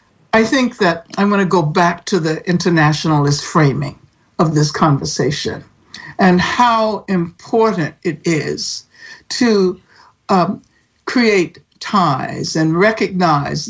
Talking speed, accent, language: 115 wpm, American, English